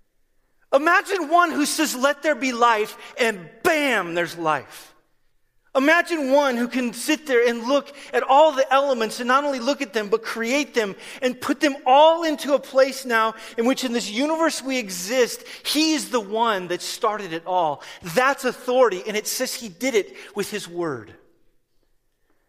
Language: English